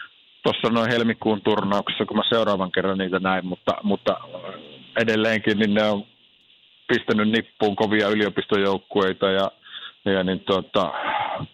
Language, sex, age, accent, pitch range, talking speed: Finnish, male, 50-69, native, 95-115 Hz, 125 wpm